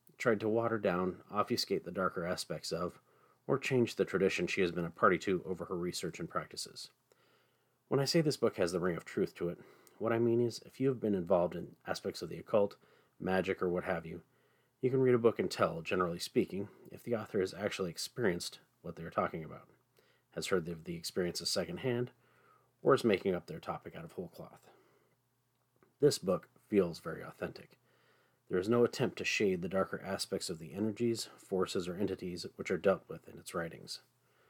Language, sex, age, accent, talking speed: English, male, 30-49, American, 205 wpm